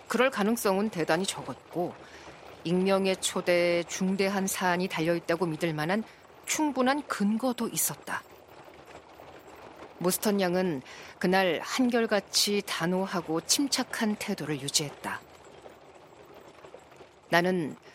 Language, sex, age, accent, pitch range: Korean, female, 40-59, native, 170-215 Hz